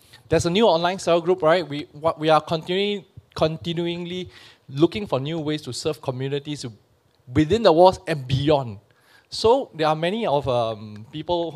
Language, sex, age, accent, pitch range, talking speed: English, male, 20-39, Malaysian, 125-160 Hz, 165 wpm